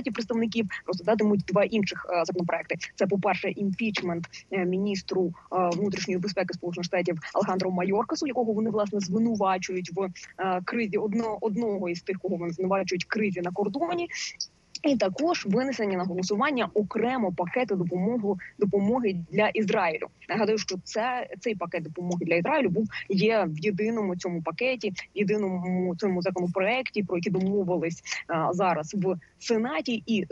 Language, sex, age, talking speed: Ukrainian, female, 20-39, 145 wpm